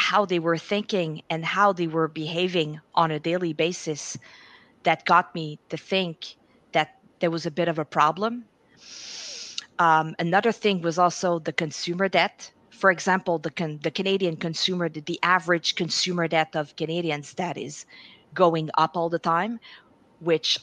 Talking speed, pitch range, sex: 160 wpm, 160-190 Hz, female